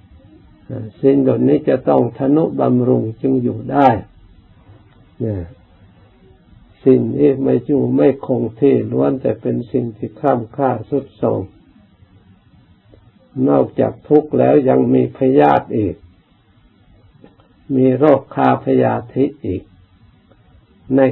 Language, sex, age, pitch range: Thai, male, 60-79, 95-130 Hz